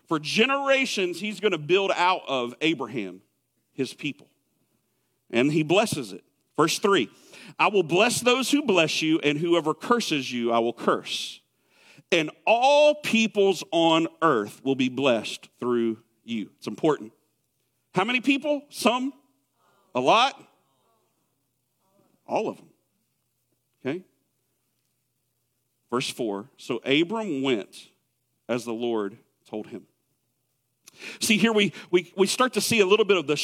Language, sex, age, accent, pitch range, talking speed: English, male, 50-69, American, 145-210 Hz, 135 wpm